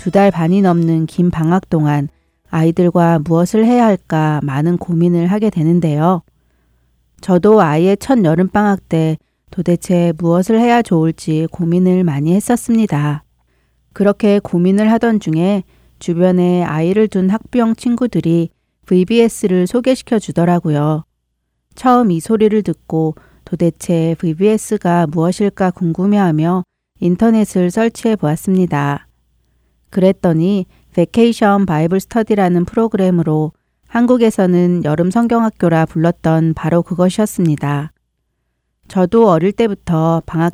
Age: 40-59